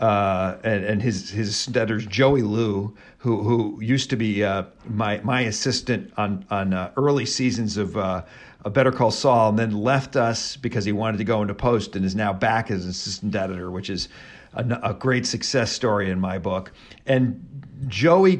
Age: 50-69